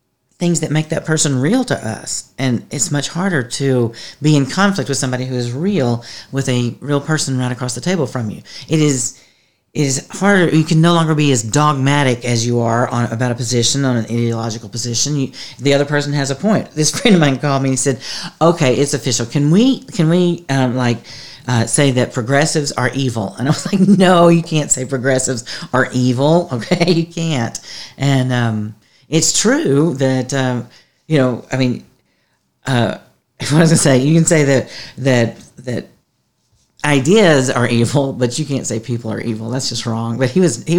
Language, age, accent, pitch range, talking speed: English, 40-59, American, 125-165 Hz, 200 wpm